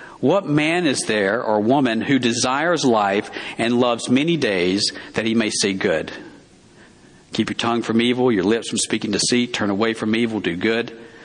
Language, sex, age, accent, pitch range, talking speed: English, male, 50-69, American, 115-145 Hz, 180 wpm